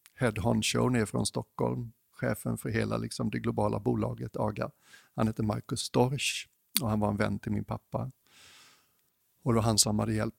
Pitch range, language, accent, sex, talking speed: 110-125 Hz, English, Swedish, male, 175 wpm